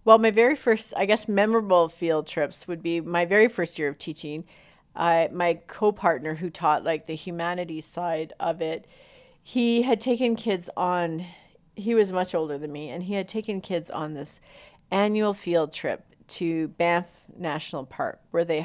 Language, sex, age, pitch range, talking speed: English, female, 40-59, 165-225 Hz, 175 wpm